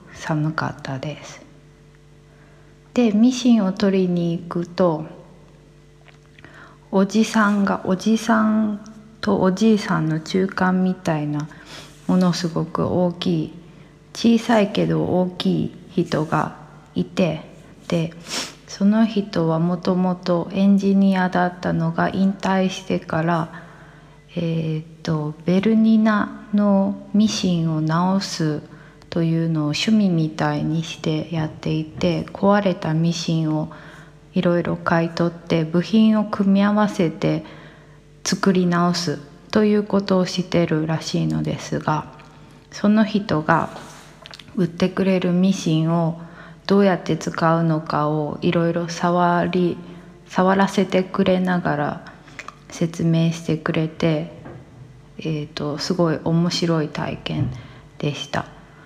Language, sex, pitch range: English, female, 155-190 Hz